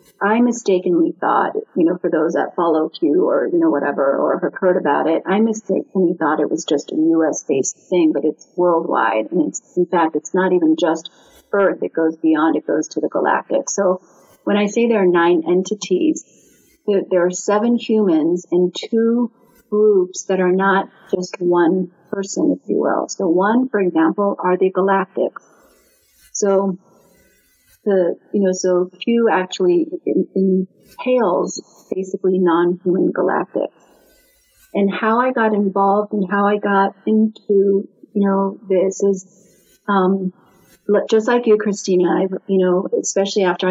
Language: English